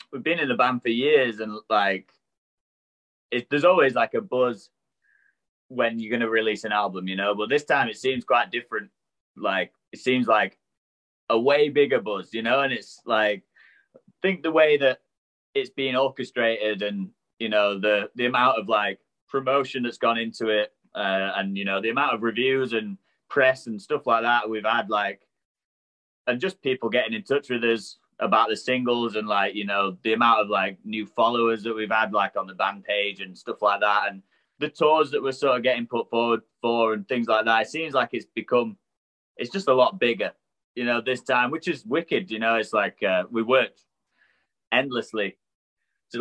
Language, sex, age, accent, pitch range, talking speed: English, male, 20-39, British, 105-130 Hz, 205 wpm